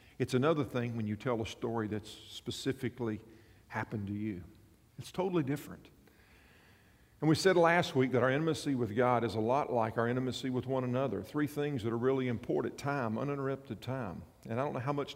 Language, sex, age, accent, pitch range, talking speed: English, male, 50-69, American, 105-130 Hz, 200 wpm